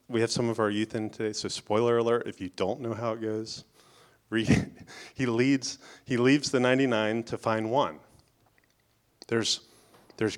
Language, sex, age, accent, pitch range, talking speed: English, male, 30-49, American, 105-130 Hz, 170 wpm